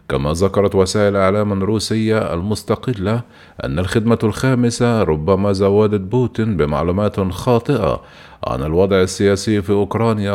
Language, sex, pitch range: Arabic, male, 95-110 Hz